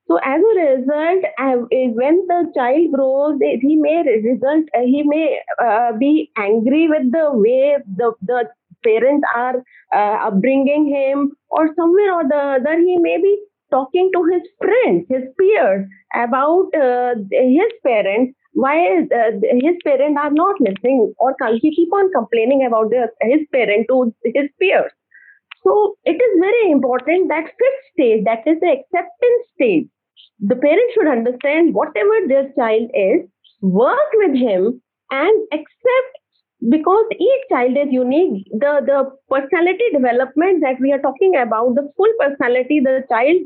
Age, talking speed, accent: 30-49, 155 wpm, Indian